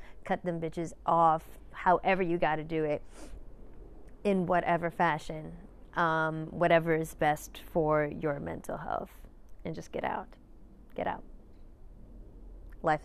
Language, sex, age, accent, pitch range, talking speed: English, female, 30-49, American, 165-205 Hz, 130 wpm